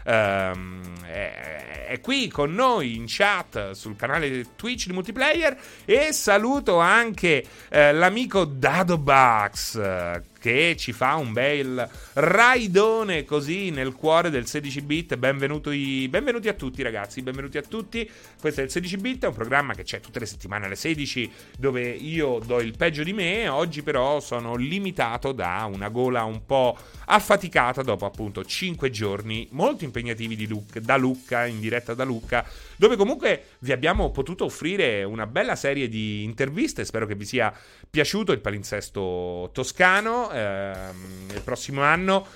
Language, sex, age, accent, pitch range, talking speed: Italian, male, 30-49, native, 110-160 Hz, 150 wpm